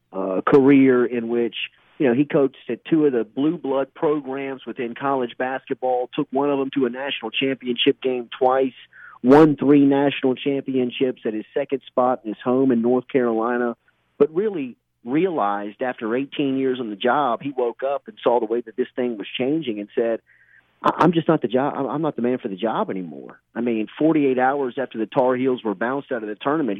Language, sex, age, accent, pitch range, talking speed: English, male, 40-59, American, 115-140 Hz, 210 wpm